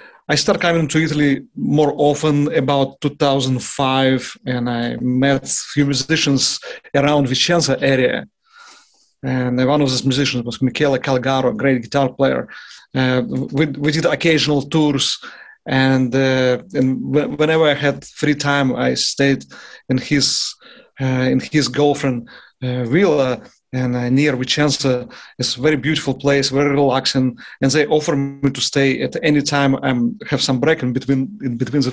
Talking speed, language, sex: 155 wpm, English, male